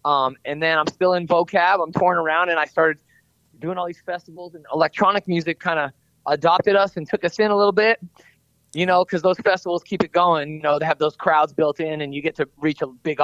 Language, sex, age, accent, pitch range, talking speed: English, male, 20-39, American, 155-185 Hz, 245 wpm